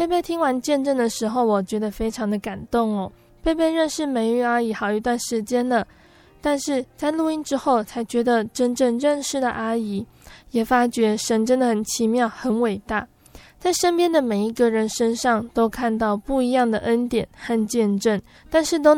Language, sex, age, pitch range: Chinese, female, 20-39, 225-260 Hz